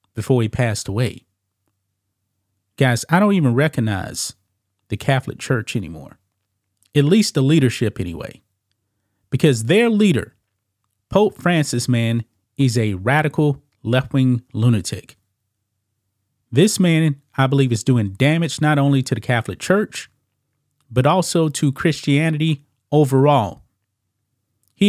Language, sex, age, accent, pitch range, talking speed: English, male, 30-49, American, 105-145 Hz, 120 wpm